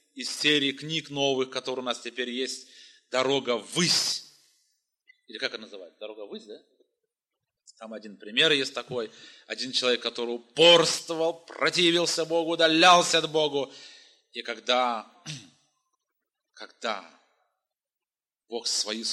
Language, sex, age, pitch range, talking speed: Russian, male, 30-49, 130-205 Hz, 115 wpm